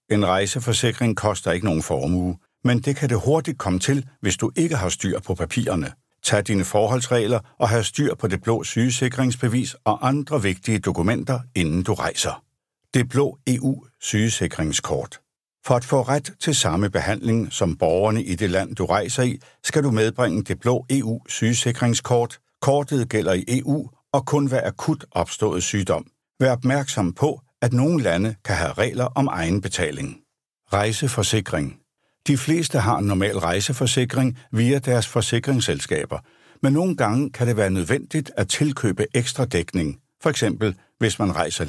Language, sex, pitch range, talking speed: Danish, male, 105-135 Hz, 155 wpm